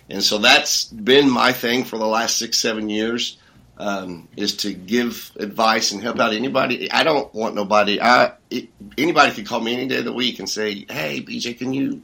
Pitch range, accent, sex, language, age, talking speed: 100-125 Hz, American, male, English, 40-59, 210 wpm